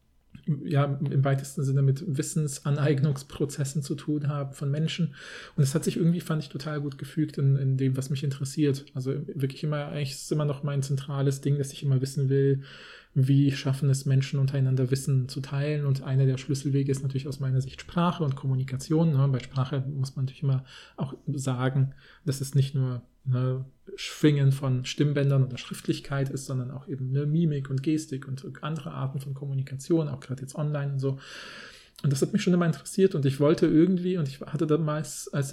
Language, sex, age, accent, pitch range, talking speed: German, male, 40-59, German, 135-150 Hz, 195 wpm